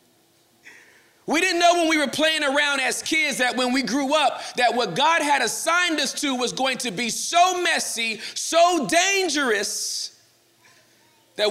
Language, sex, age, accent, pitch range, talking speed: English, male, 40-59, American, 240-335 Hz, 160 wpm